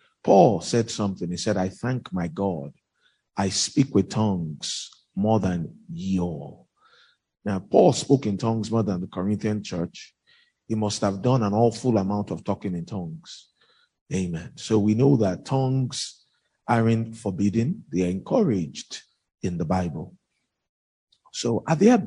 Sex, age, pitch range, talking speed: male, 50-69, 100-135 Hz, 150 wpm